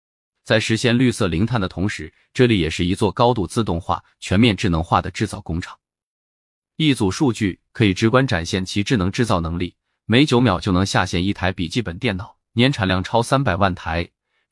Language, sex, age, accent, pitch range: Chinese, male, 20-39, native, 90-120 Hz